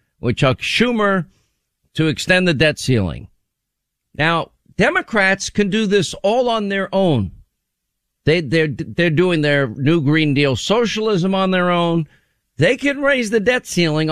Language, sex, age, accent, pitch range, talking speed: English, male, 50-69, American, 150-200 Hz, 150 wpm